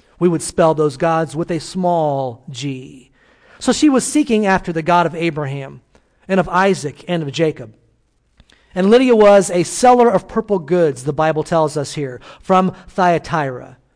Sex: male